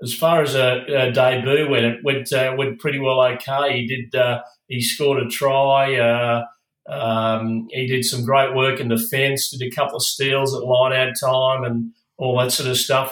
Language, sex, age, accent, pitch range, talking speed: English, male, 40-59, Australian, 125-135 Hz, 200 wpm